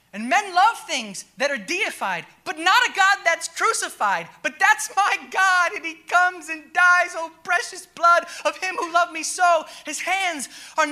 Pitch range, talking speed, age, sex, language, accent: 295-375 Hz, 185 wpm, 20-39, male, English, American